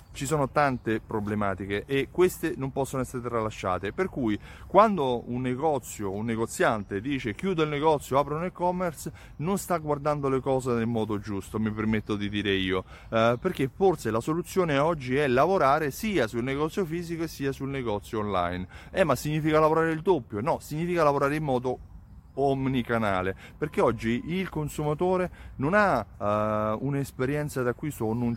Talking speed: 160 wpm